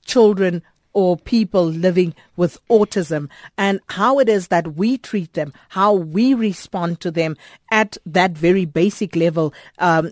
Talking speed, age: 150 wpm, 50-69